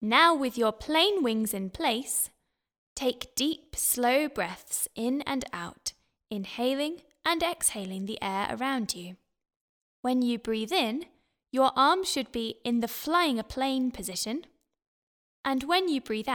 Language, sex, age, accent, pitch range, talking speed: English, female, 10-29, British, 210-315 Hz, 145 wpm